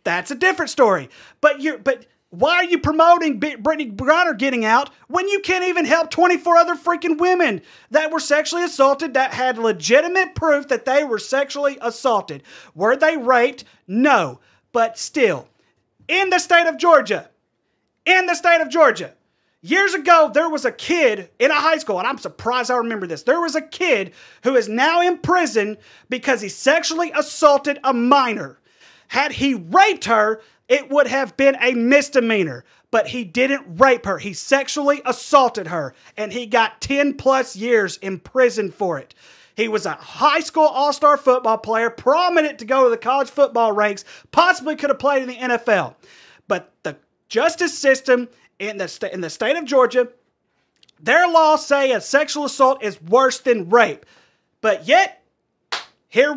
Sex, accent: male, American